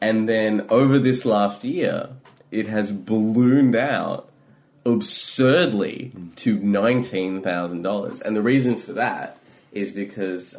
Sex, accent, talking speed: male, Australian, 115 wpm